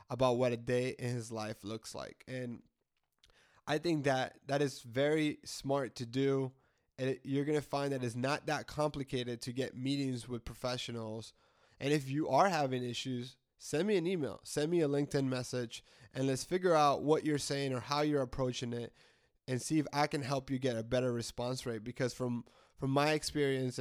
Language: English